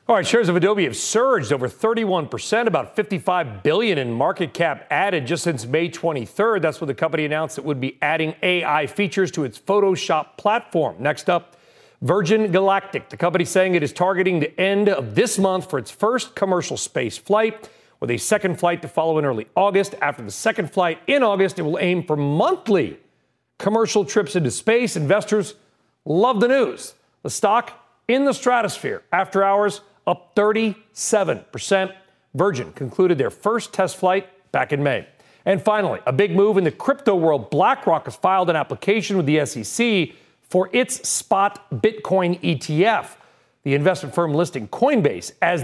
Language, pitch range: English, 165-210 Hz